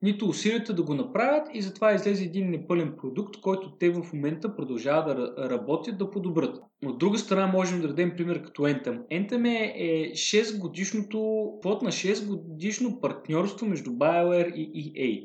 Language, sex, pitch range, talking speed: Bulgarian, male, 150-200 Hz, 160 wpm